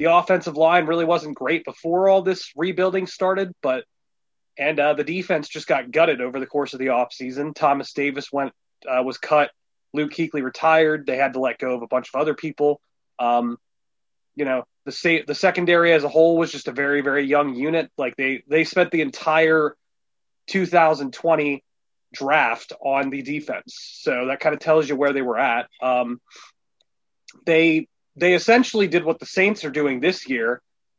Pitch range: 135-165 Hz